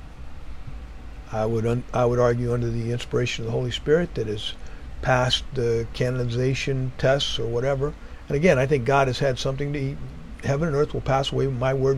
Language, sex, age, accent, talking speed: English, male, 50-69, American, 200 wpm